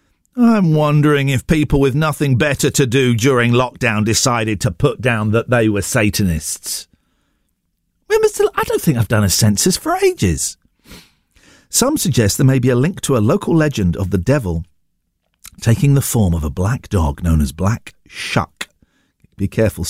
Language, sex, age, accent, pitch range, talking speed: English, male, 50-69, British, 105-170 Hz, 180 wpm